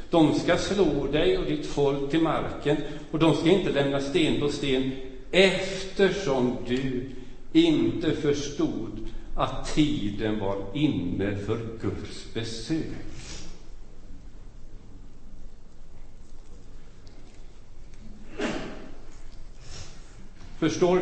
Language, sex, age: Swedish, male, 50-69